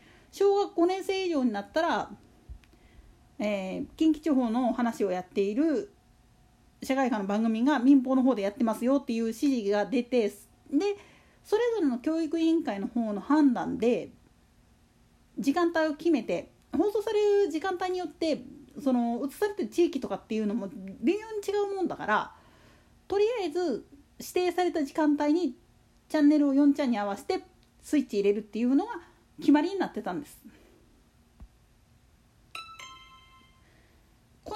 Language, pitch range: Japanese, 240-345 Hz